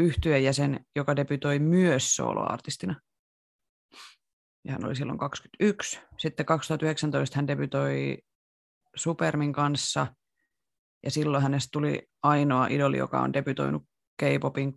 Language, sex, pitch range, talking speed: Finnish, female, 125-155 Hz, 105 wpm